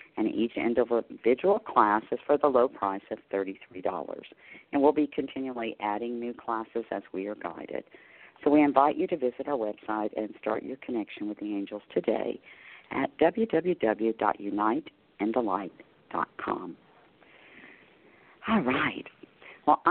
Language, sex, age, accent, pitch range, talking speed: English, female, 50-69, American, 105-140 Hz, 130 wpm